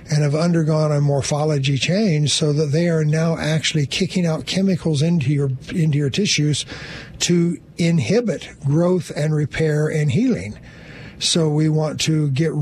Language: English